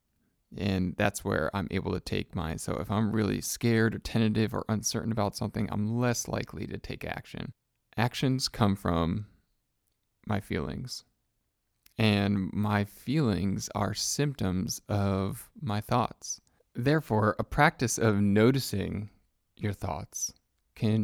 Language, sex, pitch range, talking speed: English, male, 95-115 Hz, 130 wpm